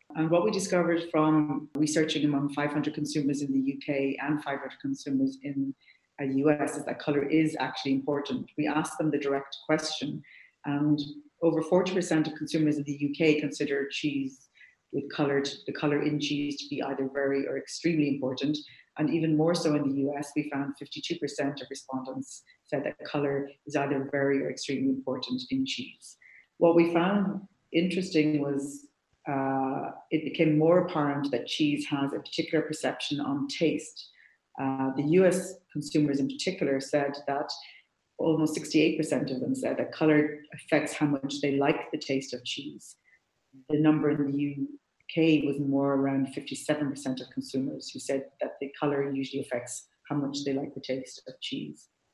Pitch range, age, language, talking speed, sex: 140-155 Hz, 40-59, English, 165 wpm, female